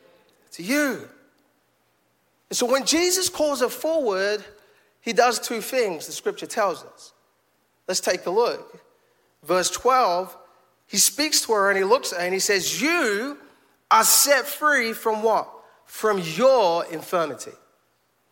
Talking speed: 145 wpm